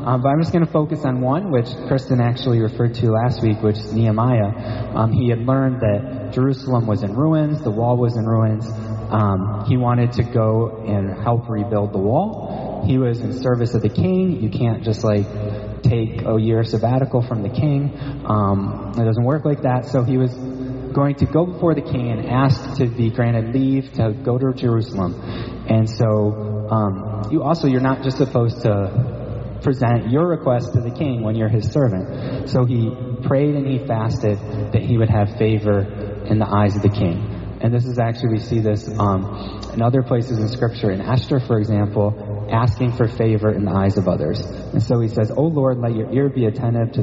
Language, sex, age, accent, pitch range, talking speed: English, male, 20-39, American, 105-130 Hz, 205 wpm